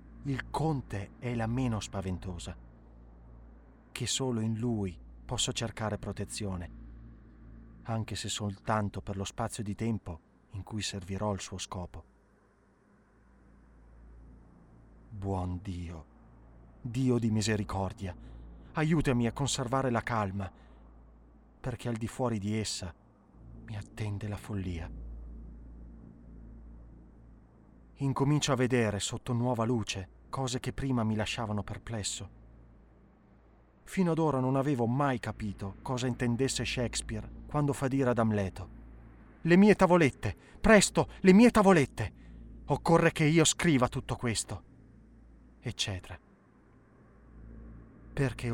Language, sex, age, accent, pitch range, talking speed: Italian, male, 30-49, native, 90-125 Hz, 110 wpm